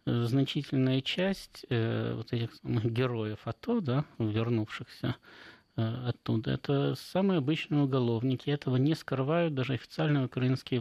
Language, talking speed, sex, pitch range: Russian, 115 wpm, male, 125-160 Hz